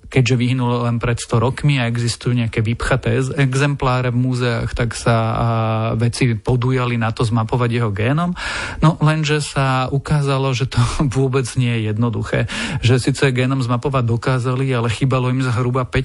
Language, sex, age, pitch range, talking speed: Slovak, male, 40-59, 115-135 Hz, 155 wpm